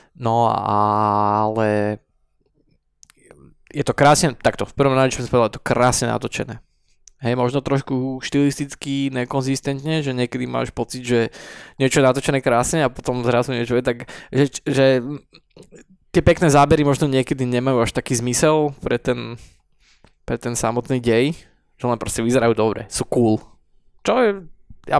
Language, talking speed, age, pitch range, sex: Slovak, 145 wpm, 20-39, 115-135 Hz, male